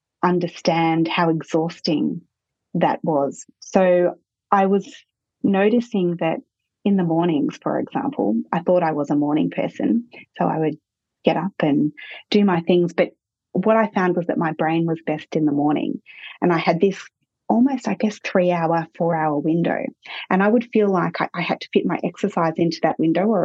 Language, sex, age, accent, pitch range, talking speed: English, female, 30-49, Australian, 160-195 Hz, 185 wpm